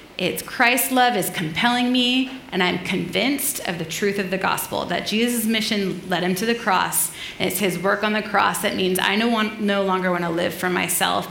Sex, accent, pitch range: female, American, 190-245 Hz